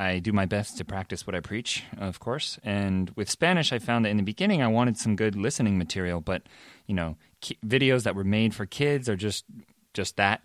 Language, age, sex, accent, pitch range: Korean, 30-49, male, American, 95-120 Hz